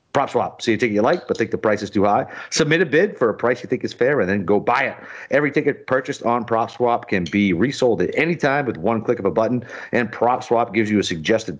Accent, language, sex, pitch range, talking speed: American, English, male, 110-135 Hz, 265 wpm